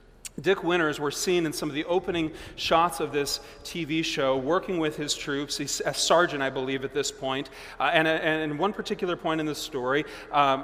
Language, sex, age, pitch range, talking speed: English, male, 30-49, 135-160 Hz, 205 wpm